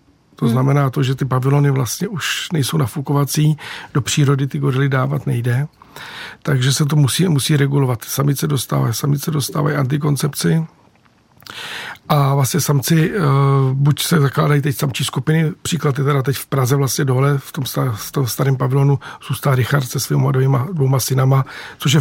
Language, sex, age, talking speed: Czech, male, 50-69, 155 wpm